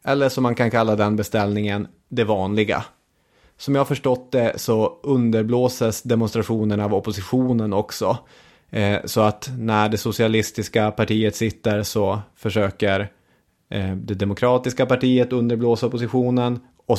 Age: 30-49